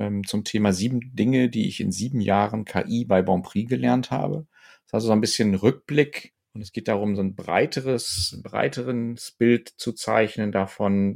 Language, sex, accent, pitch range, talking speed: German, male, German, 95-115 Hz, 185 wpm